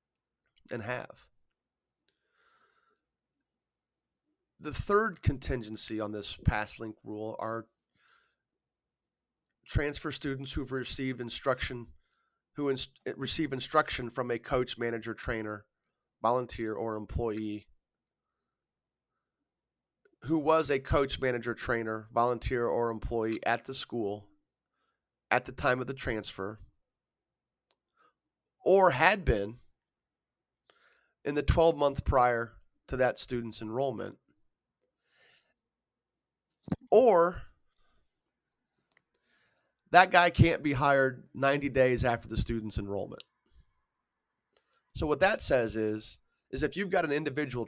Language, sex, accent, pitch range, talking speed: English, male, American, 110-140 Hz, 100 wpm